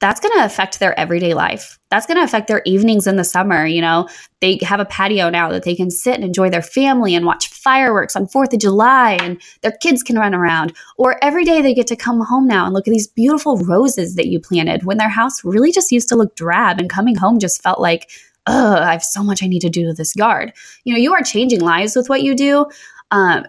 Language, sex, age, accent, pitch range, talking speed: English, female, 20-39, American, 180-245 Hz, 255 wpm